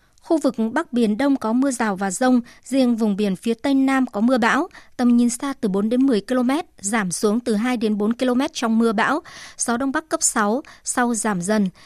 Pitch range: 215-270 Hz